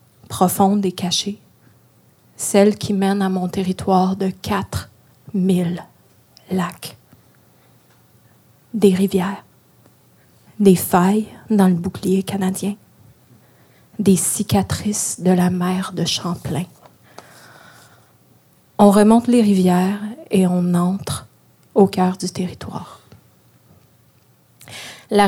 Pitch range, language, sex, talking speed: 180-210 Hz, French, female, 95 wpm